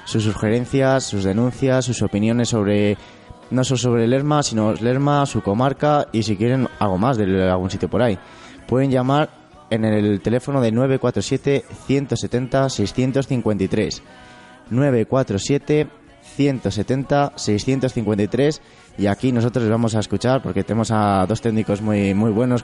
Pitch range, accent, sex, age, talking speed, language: 100-130 Hz, Spanish, male, 20-39, 125 wpm, Spanish